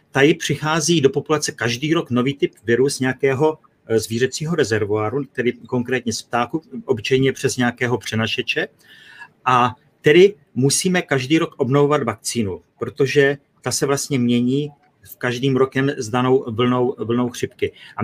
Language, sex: Czech, male